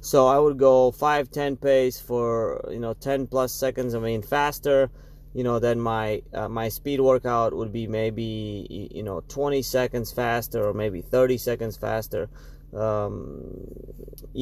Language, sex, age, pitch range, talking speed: English, male, 20-39, 115-140 Hz, 160 wpm